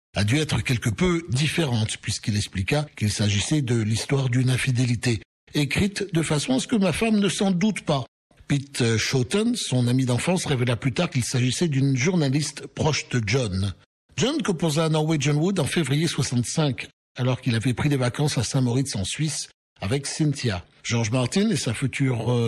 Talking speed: 175 wpm